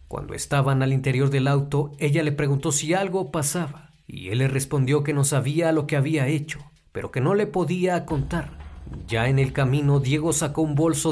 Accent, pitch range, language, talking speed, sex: Mexican, 135-160 Hz, Spanish, 200 wpm, male